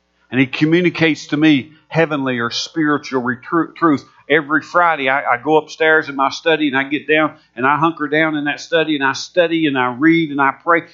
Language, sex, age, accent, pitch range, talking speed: English, male, 50-69, American, 125-165 Hz, 220 wpm